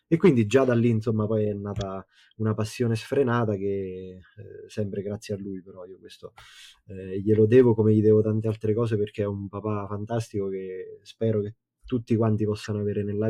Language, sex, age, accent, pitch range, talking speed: Italian, male, 20-39, native, 105-115 Hz, 195 wpm